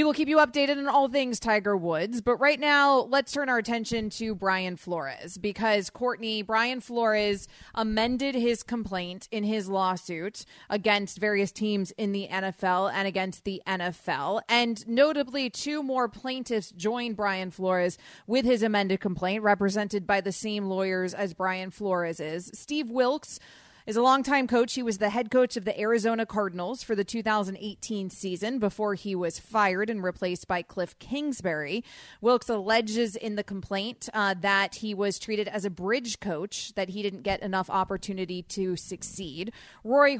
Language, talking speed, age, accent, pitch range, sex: English, 165 wpm, 30-49, American, 195-240 Hz, female